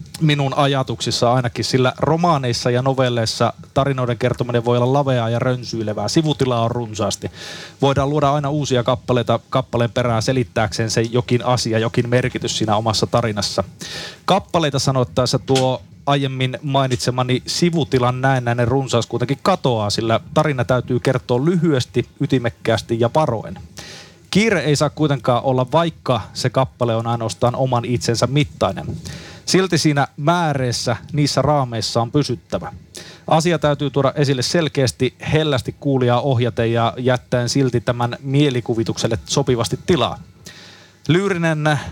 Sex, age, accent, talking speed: male, 30-49, native, 125 wpm